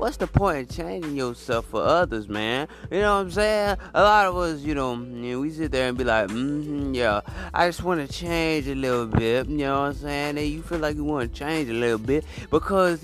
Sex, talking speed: male, 245 wpm